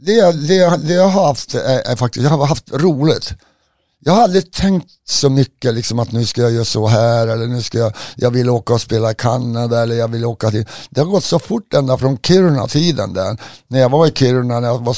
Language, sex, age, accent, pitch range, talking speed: Swedish, male, 60-79, native, 115-140 Hz, 240 wpm